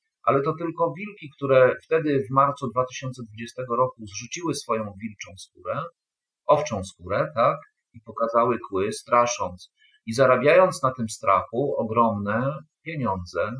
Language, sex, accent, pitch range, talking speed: Polish, male, native, 110-135 Hz, 125 wpm